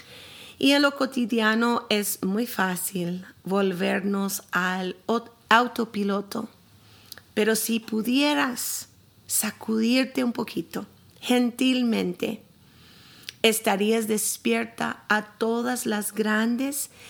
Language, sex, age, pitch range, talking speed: Spanish, female, 40-59, 200-250 Hz, 85 wpm